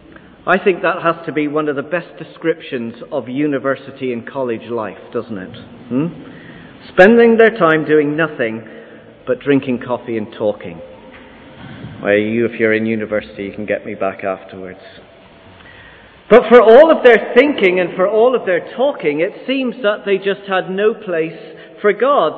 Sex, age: male, 40-59